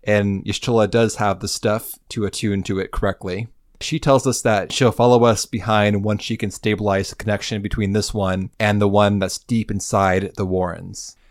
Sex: male